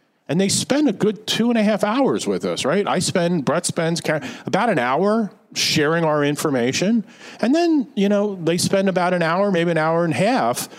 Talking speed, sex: 210 wpm, male